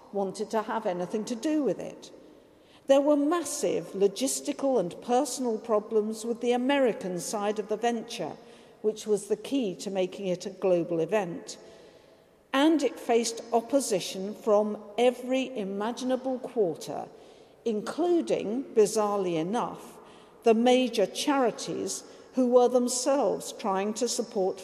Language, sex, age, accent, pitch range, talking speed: English, female, 50-69, British, 205-255 Hz, 125 wpm